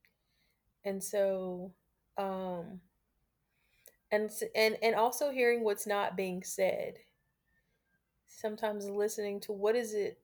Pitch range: 190-225 Hz